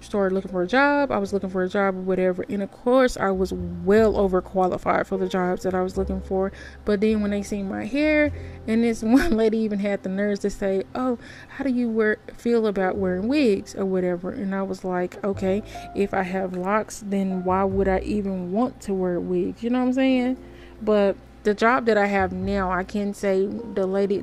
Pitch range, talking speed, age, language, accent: 190-220 Hz, 225 wpm, 20-39, English, American